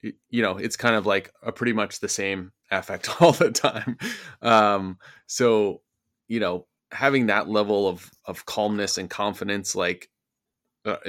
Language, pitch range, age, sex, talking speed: English, 95-110 Hz, 20-39, male, 155 wpm